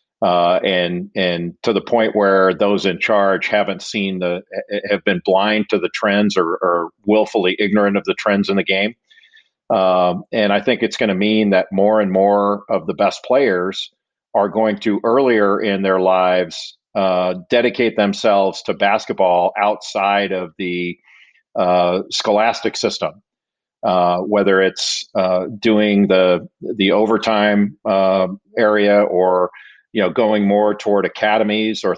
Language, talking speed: English, 150 wpm